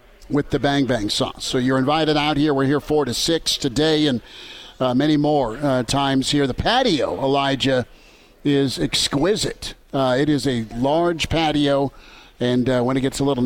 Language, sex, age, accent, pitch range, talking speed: English, male, 50-69, American, 135-160 Hz, 185 wpm